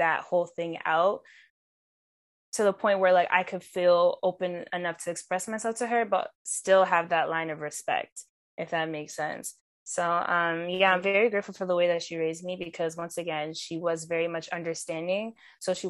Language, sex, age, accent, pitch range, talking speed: English, female, 10-29, American, 165-190 Hz, 200 wpm